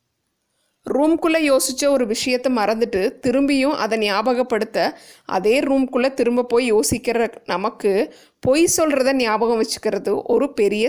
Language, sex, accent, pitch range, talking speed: Tamil, female, native, 220-275 Hz, 110 wpm